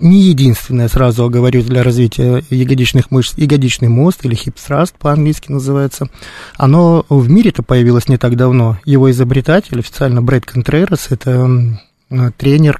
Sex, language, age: male, Russian, 20-39